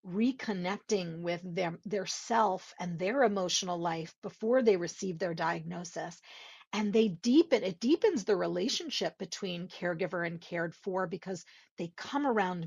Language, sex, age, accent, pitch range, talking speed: English, female, 40-59, American, 180-230 Hz, 140 wpm